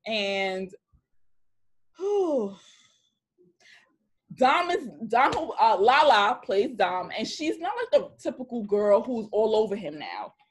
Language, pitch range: English, 195-295 Hz